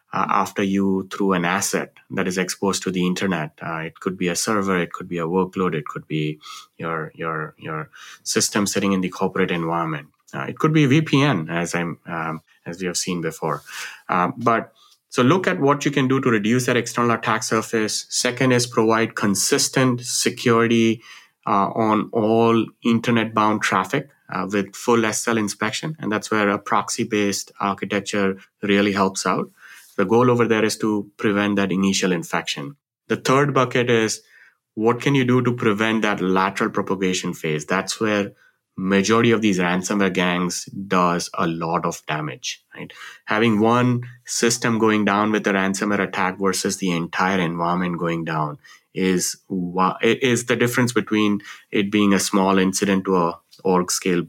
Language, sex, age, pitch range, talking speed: English, male, 20-39, 95-115 Hz, 170 wpm